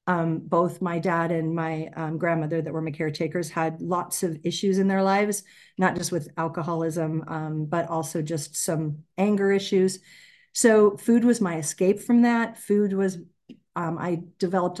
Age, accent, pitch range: 50-69, American, 155-185 Hz